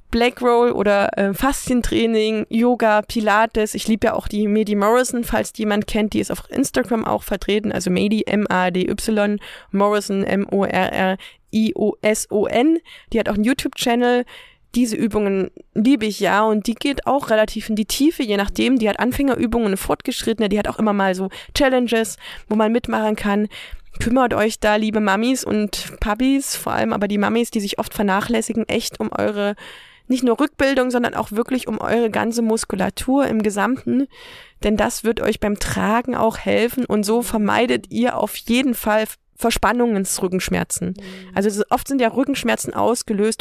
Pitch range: 205-240 Hz